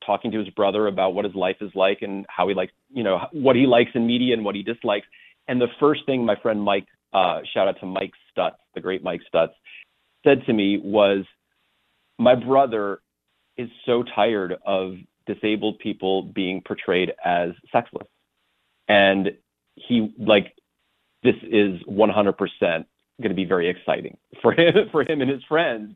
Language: English